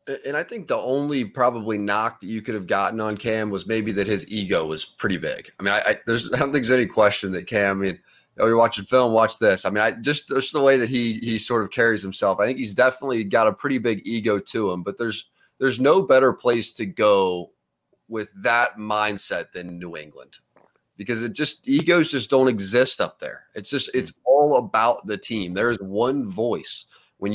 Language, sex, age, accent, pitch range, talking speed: English, male, 30-49, American, 105-135 Hz, 230 wpm